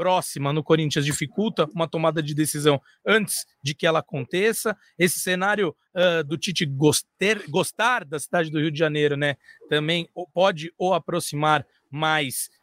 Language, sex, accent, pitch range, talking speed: Portuguese, male, Brazilian, 165-215 Hz, 150 wpm